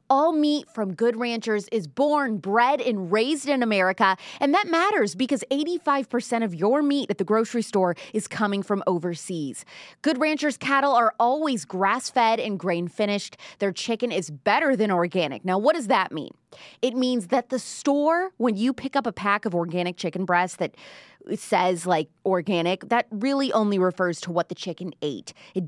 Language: English